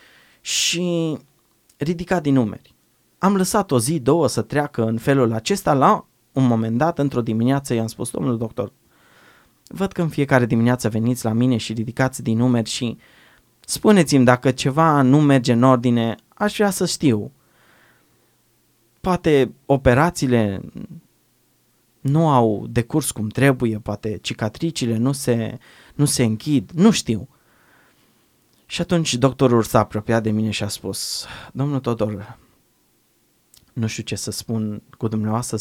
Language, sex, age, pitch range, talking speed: Romanian, male, 20-39, 110-140 Hz, 140 wpm